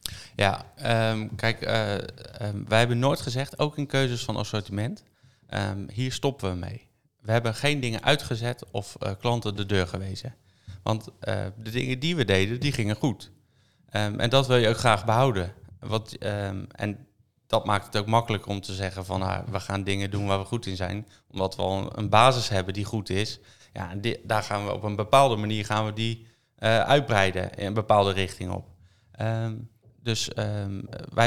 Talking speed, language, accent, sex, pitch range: 195 wpm, Dutch, Dutch, male, 100-125 Hz